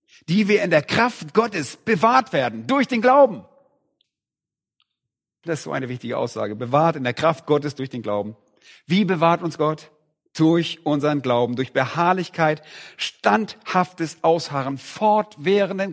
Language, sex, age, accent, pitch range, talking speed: German, male, 50-69, German, 135-210 Hz, 140 wpm